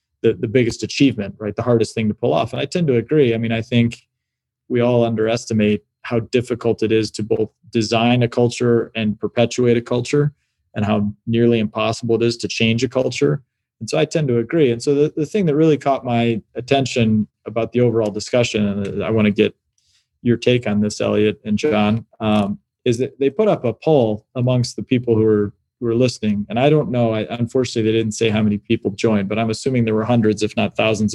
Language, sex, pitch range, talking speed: English, male, 110-125 Hz, 220 wpm